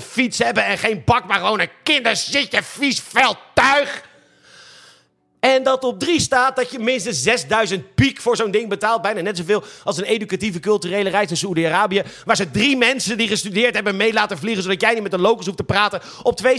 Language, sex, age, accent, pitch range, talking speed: Dutch, male, 40-59, Dutch, 185-255 Hz, 205 wpm